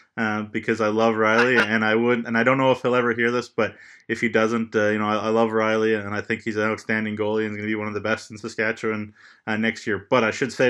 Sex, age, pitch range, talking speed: male, 20-39, 110-120 Hz, 295 wpm